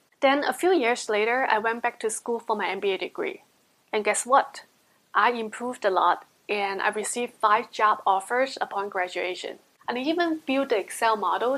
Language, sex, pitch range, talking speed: English, female, 215-275 Hz, 185 wpm